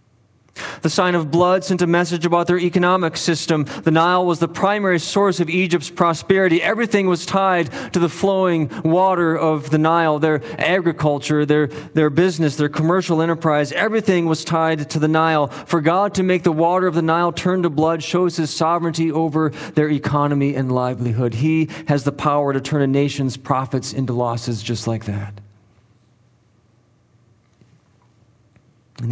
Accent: American